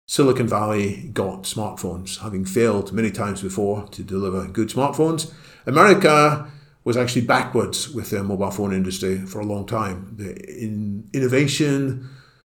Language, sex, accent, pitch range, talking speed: English, male, British, 100-120 Hz, 135 wpm